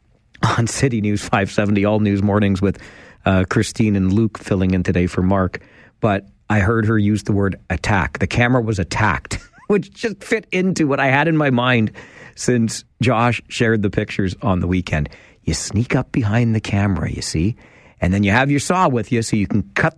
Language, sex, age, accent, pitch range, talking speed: English, male, 40-59, American, 100-140 Hz, 200 wpm